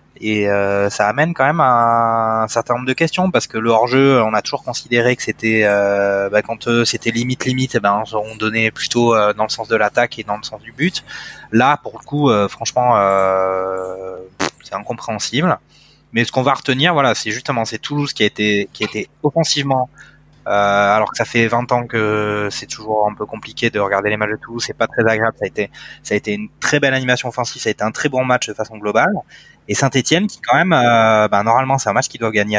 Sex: male